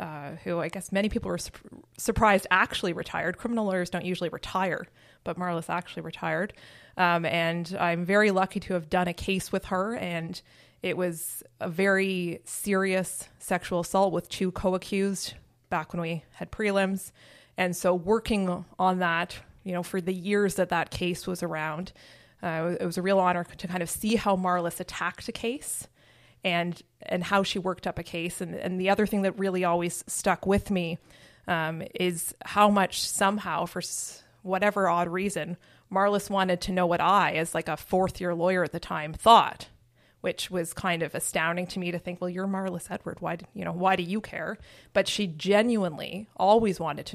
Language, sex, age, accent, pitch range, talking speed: English, female, 20-39, American, 170-195 Hz, 190 wpm